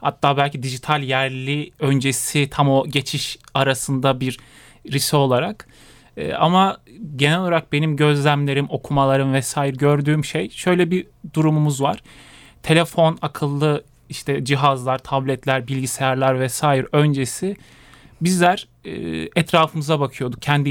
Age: 30-49